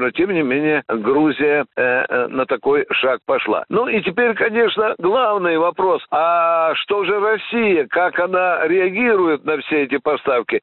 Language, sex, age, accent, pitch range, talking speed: Russian, male, 60-79, native, 165-220 Hz, 160 wpm